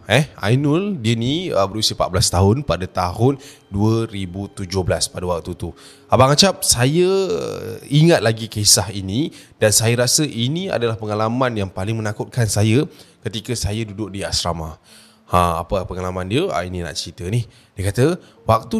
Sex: male